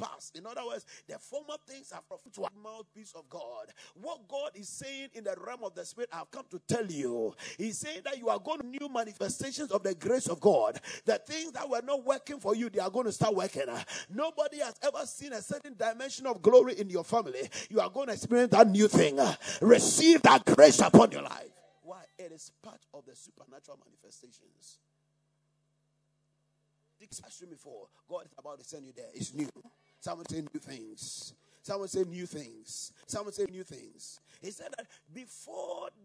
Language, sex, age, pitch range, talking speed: English, male, 40-59, 180-285 Hz, 190 wpm